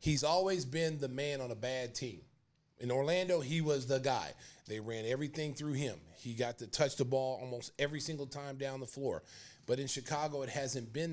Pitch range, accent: 125-150 Hz, American